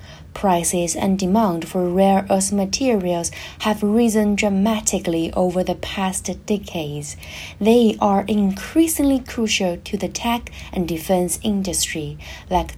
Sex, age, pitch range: female, 20-39, 175-215 Hz